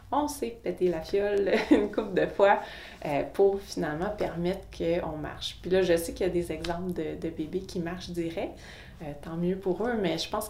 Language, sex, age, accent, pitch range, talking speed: French, female, 30-49, Canadian, 165-205 Hz, 215 wpm